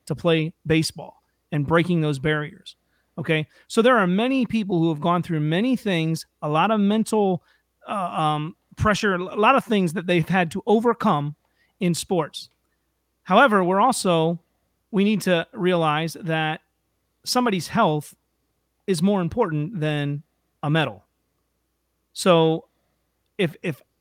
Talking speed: 140 wpm